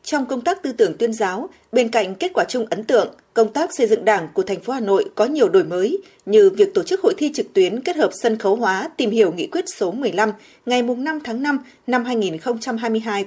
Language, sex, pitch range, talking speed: Vietnamese, female, 220-365 Hz, 240 wpm